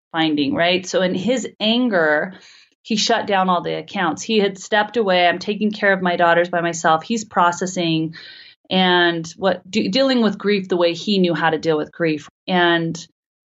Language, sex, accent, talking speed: English, female, American, 180 wpm